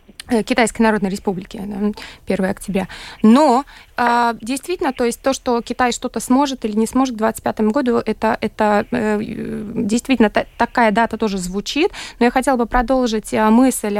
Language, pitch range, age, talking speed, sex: Russian, 210-255 Hz, 20-39, 140 wpm, female